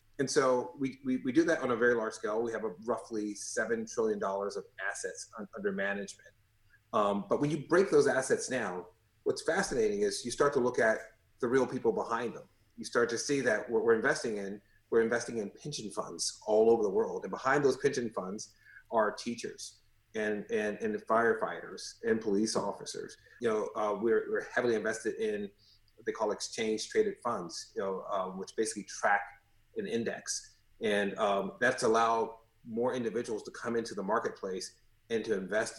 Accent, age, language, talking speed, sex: American, 30-49, English, 185 wpm, male